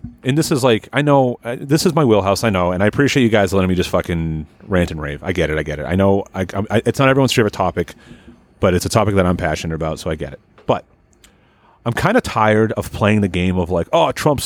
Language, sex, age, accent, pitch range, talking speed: English, male, 30-49, American, 95-140 Hz, 265 wpm